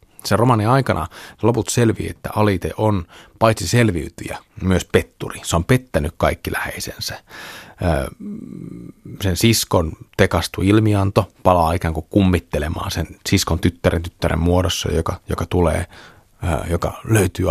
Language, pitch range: Finnish, 85-115 Hz